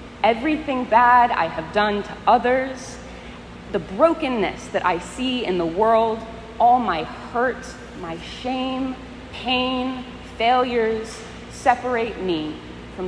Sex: female